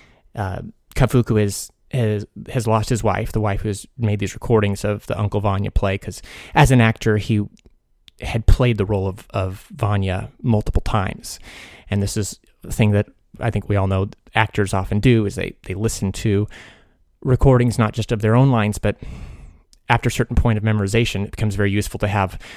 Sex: male